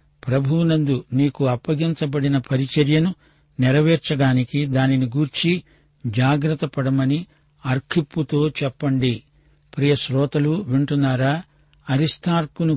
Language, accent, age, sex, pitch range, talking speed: Telugu, native, 60-79, male, 140-155 Hz, 70 wpm